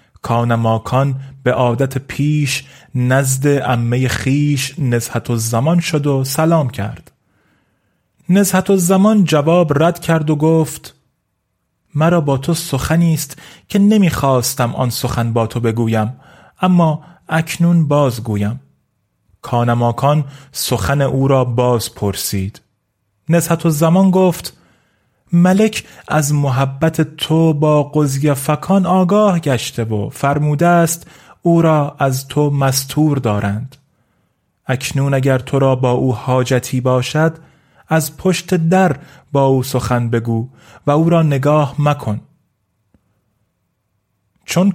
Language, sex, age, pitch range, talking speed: Persian, male, 30-49, 120-160 Hz, 115 wpm